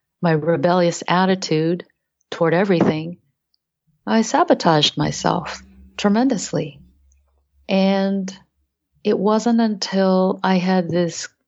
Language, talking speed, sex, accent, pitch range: English, 85 wpm, female, American, 155-180 Hz